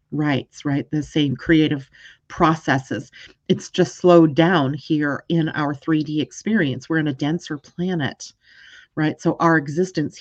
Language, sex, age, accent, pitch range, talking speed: English, female, 40-59, American, 165-230 Hz, 140 wpm